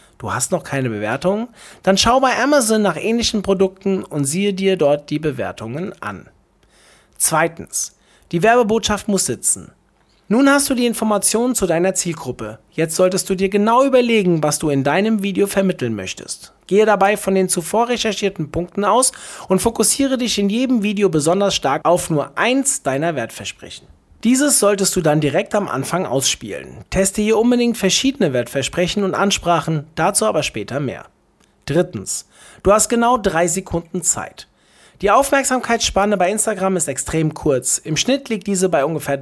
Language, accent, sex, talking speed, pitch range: German, German, male, 160 wpm, 155-220 Hz